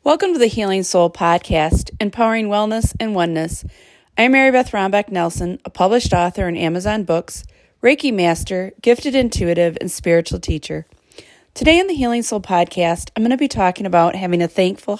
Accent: American